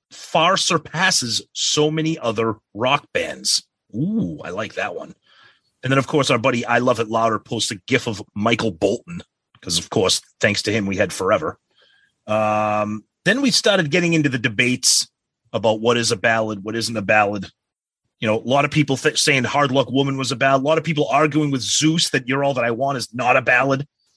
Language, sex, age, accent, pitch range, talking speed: English, male, 30-49, American, 115-155 Hz, 210 wpm